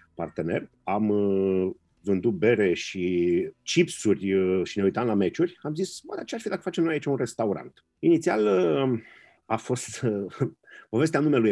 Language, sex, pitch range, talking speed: Romanian, male, 100-125 Hz, 165 wpm